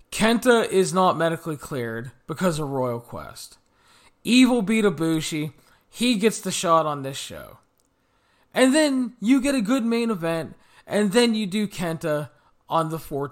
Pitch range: 145-225 Hz